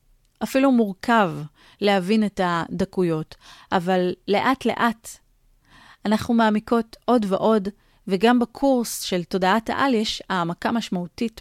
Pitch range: 185-240 Hz